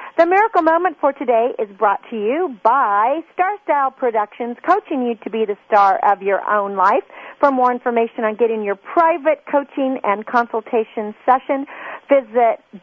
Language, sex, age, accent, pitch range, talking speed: English, female, 50-69, American, 220-300 Hz, 165 wpm